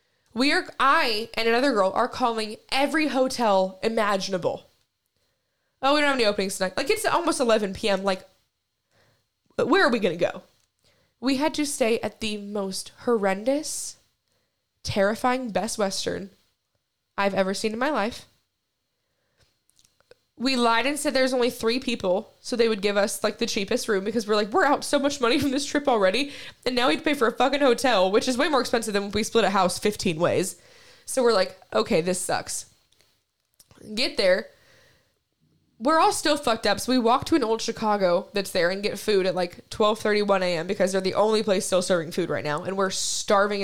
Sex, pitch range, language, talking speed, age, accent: female, 195-260 Hz, English, 190 wpm, 10-29, American